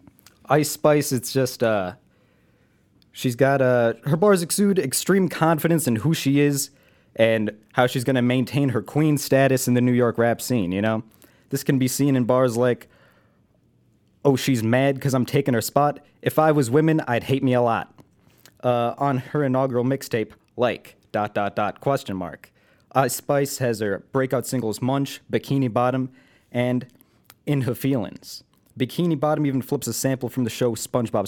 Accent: American